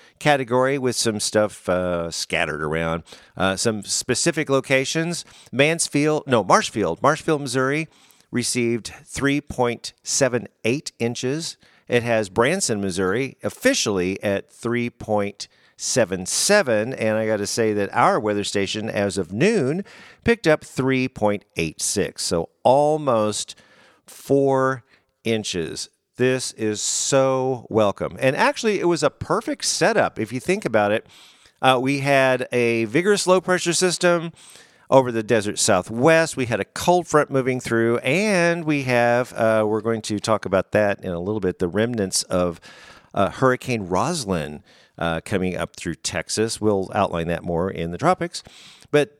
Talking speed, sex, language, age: 150 wpm, male, English, 50-69